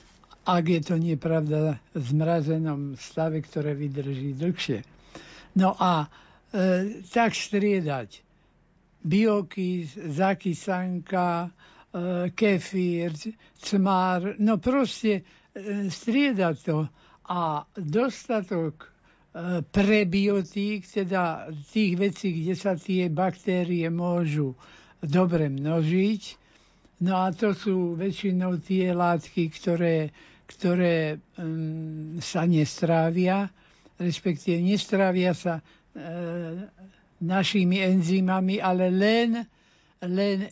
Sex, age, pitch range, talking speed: male, 60-79, 165-200 Hz, 85 wpm